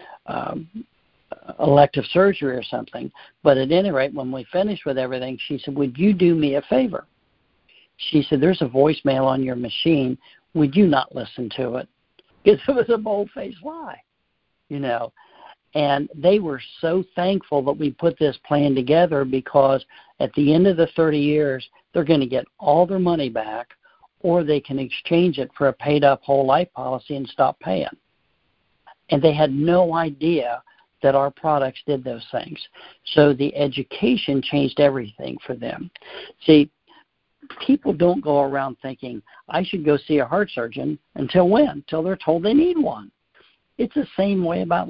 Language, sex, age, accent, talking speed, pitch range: English, male, 60-79, American, 170 wpm, 135-180 Hz